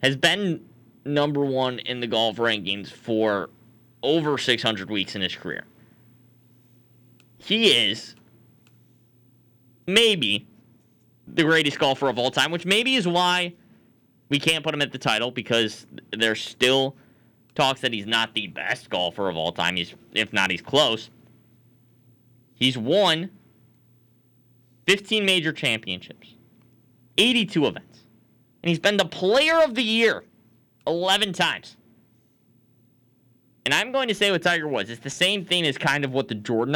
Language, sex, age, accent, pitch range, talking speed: English, male, 20-39, American, 115-160 Hz, 145 wpm